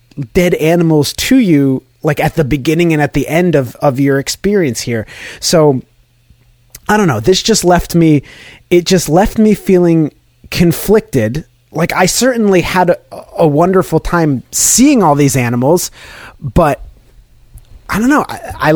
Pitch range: 130-175 Hz